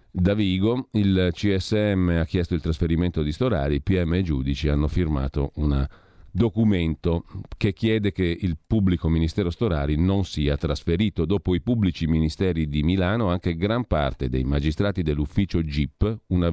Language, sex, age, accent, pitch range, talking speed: Italian, male, 40-59, native, 80-105 Hz, 155 wpm